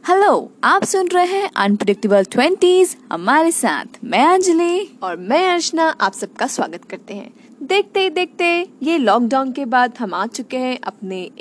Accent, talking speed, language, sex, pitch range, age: native, 160 wpm, Hindi, female, 210-275 Hz, 20-39